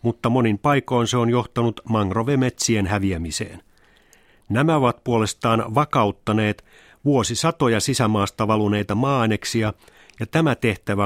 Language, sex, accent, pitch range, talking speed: Finnish, male, native, 105-135 Hz, 105 wpm